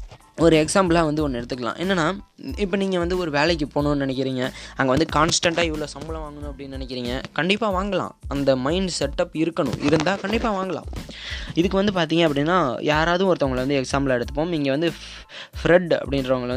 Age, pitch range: 20-39, 135-170 Hz